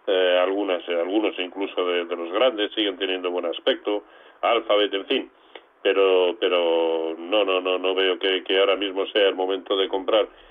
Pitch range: 95-120 Hz